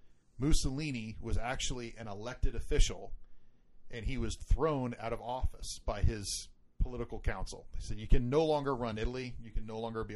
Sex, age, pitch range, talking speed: male, 40-59, 95-125 Hz, 185 wpm